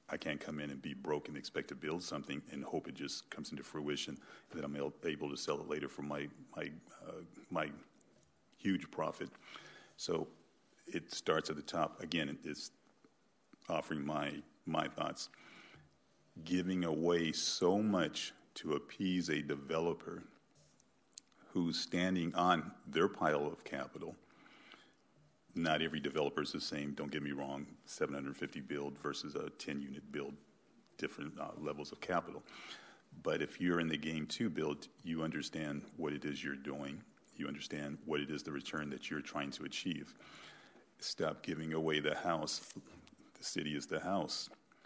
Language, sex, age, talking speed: English, male, 40-59, 160 wpm